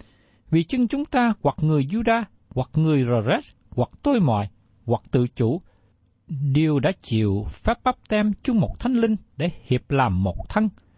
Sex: male